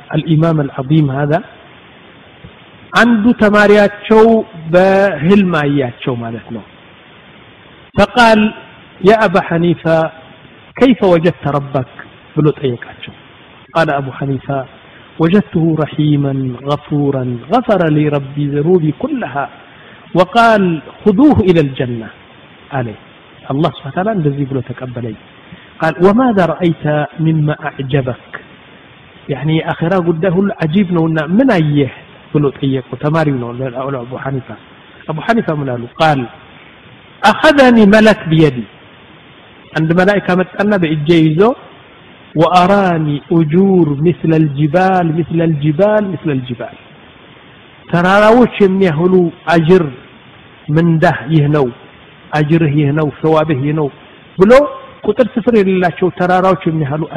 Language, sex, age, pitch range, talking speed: Amharic, male, 50-69, 145-185 Hz, 95 wpm